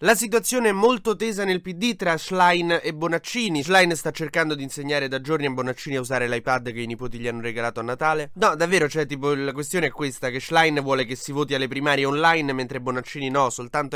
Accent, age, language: native, 20-39, Italian